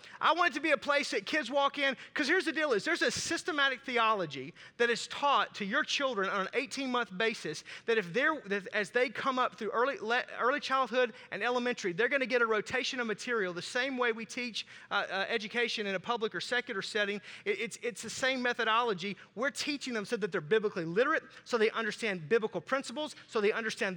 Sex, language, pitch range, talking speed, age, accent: male, English, 225-275 Hz, 225 wpm, 30-49, American